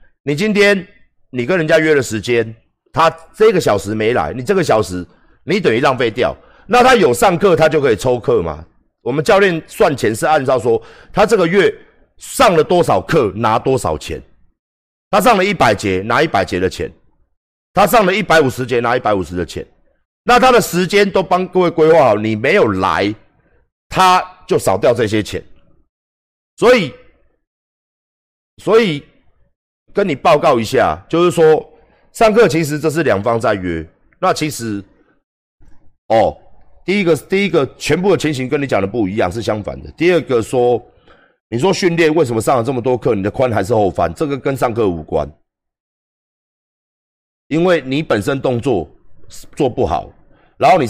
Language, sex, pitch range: Chinese, male, 110-175 Hz